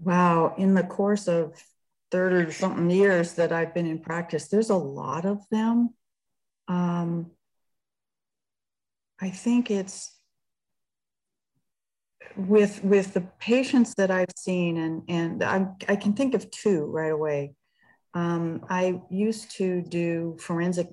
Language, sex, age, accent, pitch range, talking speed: English, female, 50-69, American, 160-195 Hz, 125 wpm